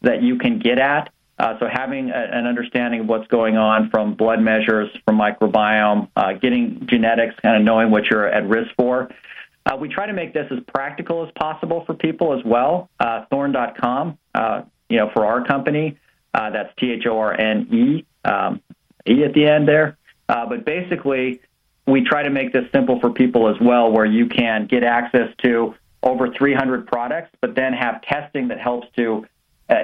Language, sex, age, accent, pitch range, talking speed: English, male, 40-59, American, 110-135 Hz, 185 wpm